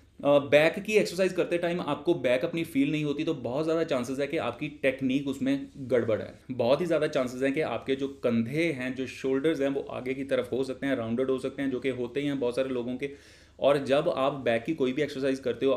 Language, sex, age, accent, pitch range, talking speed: Hindi, male, 30-49, native, 125-150 Hz, 250 wpm